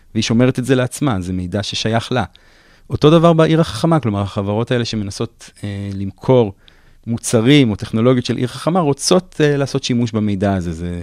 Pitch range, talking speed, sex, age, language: 95-120 Hz, 175 wpm, male, 30-49, Hebrew